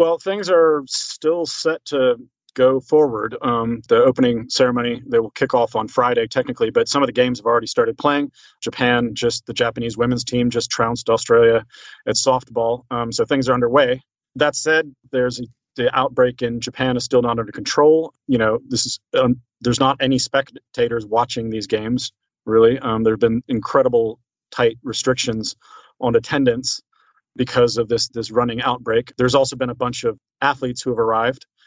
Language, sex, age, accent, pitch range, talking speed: English, male, 30-49, American, 115-140 Hz, 180 wpm